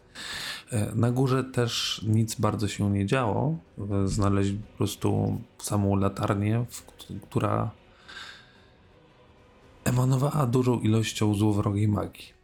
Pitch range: 100-120 Hz